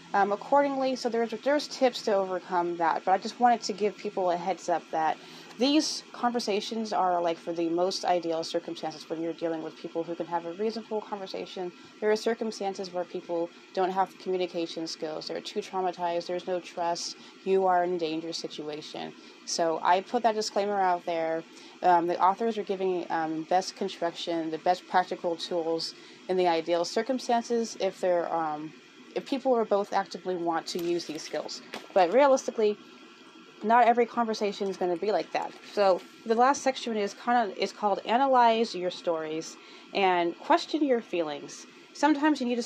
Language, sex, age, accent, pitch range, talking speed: English, female, 20-39, American, 170-225 Hz, 180 wpm